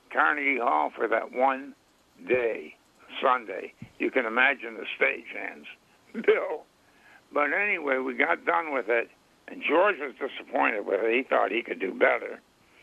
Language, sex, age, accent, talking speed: English, male, 60-79, American, 155 wpm